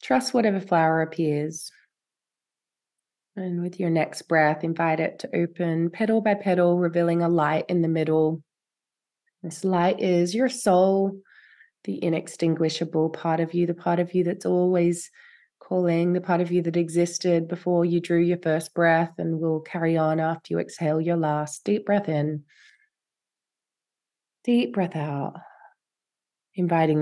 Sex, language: female, English